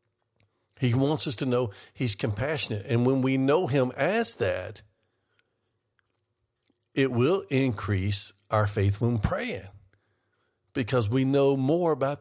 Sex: male